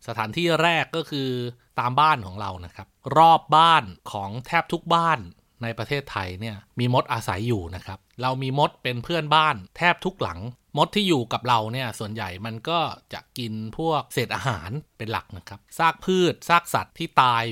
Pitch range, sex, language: 110-145 Hz, male, Thai